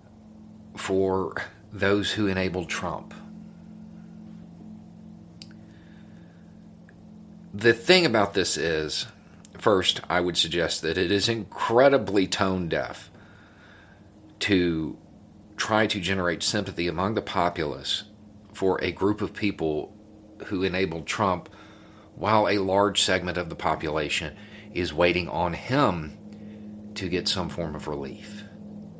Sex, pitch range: male, 95-140 Hz